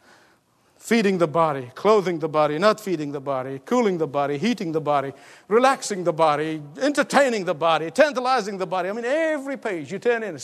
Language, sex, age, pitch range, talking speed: English, male, 50-69, 180-280 Hz, 190 wpm